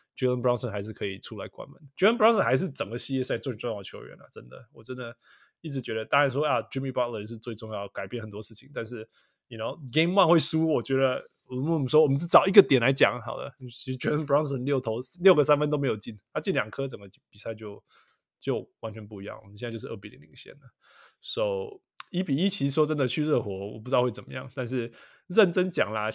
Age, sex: 20-39, male